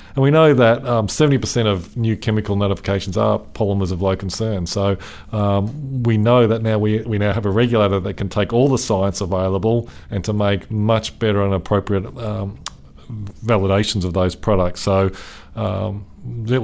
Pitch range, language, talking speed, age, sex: 95-110 Hz, English, 175 wpm, 40-59, male